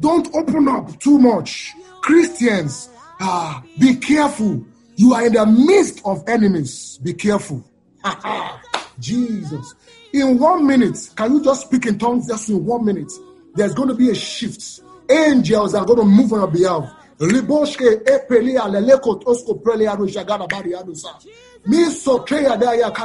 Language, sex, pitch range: English, male, 210-275 Hz